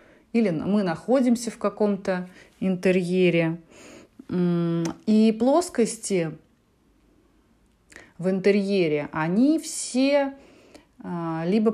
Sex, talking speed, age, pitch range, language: female, 65 wpm, 30-49, 170-230 Hz, Russian